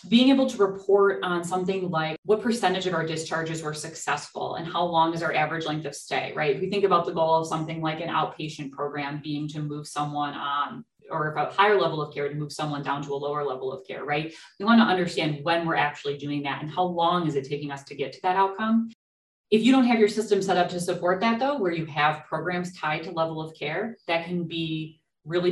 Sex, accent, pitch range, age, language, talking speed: female, American, 150-185 Hz, 30-49, English, 245 wpm